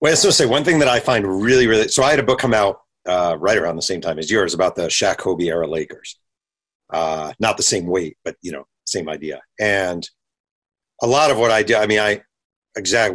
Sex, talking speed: male, 245 wpm